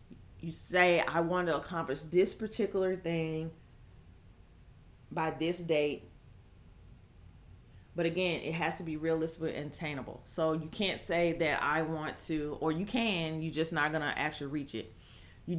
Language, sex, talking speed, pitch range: English, female, 160 wpm, 120-185 Hz